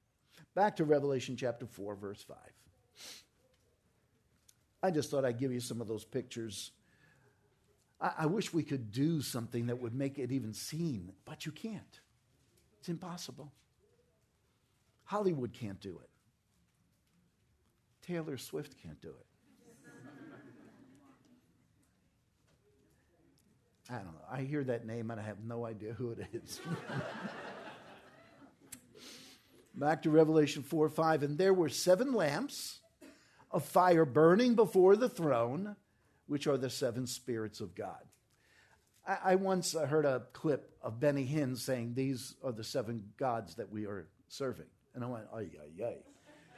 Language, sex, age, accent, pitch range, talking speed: English, male, 60-79, American, 110-150 Hz, 140 wpm